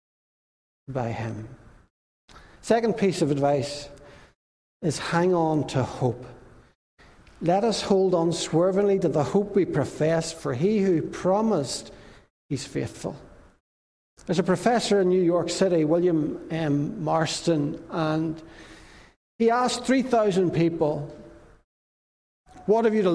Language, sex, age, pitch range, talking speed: English, male, 60-79, 150-195 Hz, 120 wpm